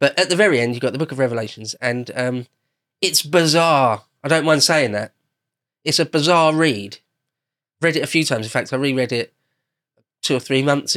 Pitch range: 120-150 Hz